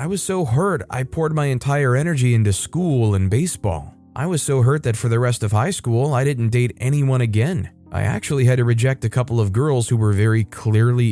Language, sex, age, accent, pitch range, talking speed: English, male, 20-39, American, 105-140 Hz, 225 wpm